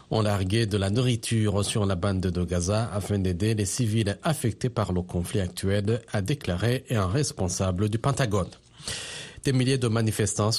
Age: 40-59